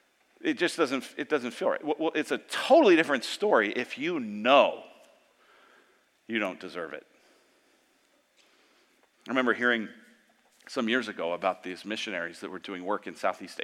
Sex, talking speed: male, 155 wpm